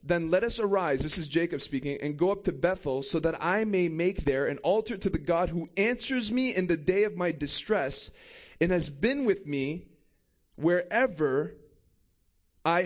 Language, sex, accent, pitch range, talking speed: English, male, American, 185-235 Hz, 185 wpm